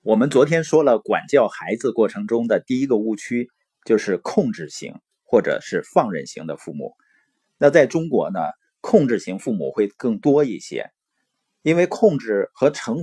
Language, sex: Chinese, male